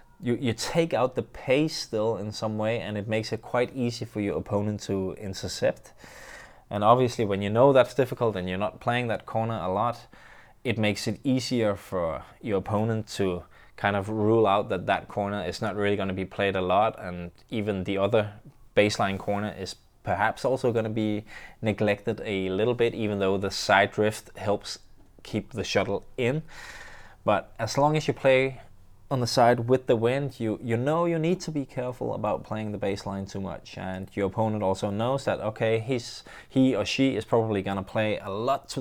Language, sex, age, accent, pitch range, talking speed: English, male, 20-39, Danish, 100-120 Hz, 200 wpm